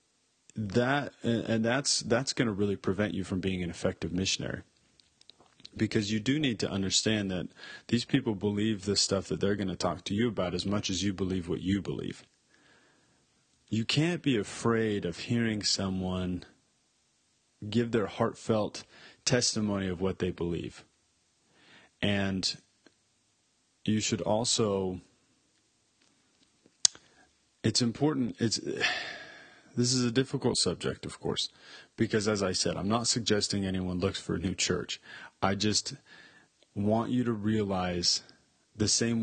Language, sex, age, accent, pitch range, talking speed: English, male, 30-49, American, 95-115 Hz, 140 wpm